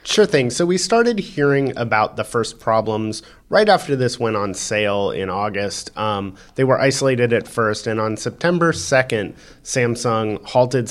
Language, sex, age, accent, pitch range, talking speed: English, male, 30-49, American, 110-140 Hz, 165 wpm